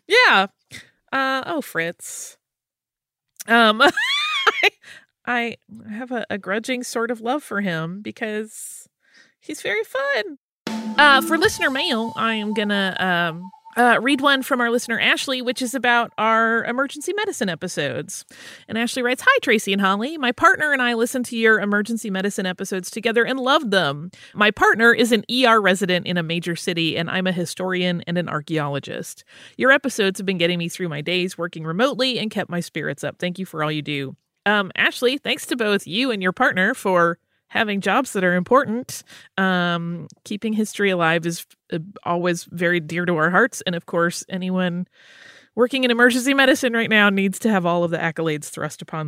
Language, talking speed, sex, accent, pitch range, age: English, 180 wpm, female, American, 180-250 Hz, 30-49